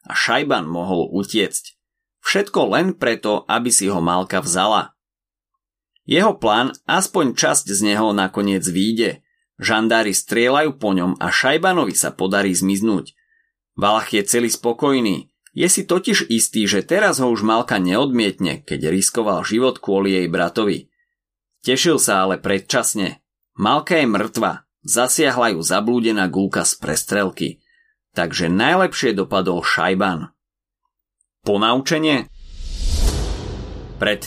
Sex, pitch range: male, 95-145 Hz